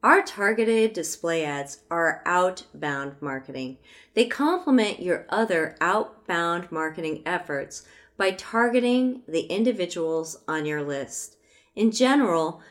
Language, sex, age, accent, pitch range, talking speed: English, female, 40-59, American, 155-210 Hz, 110 wpm